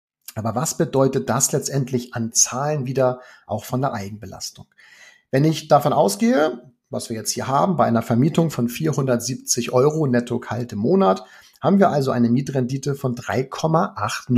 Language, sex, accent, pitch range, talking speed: German, male, German, 120-155 Hz, 155 wpm